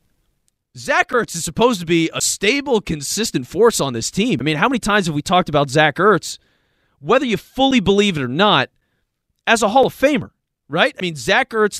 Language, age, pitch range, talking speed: English, 30-49, 145-210 Hz, 210 wpm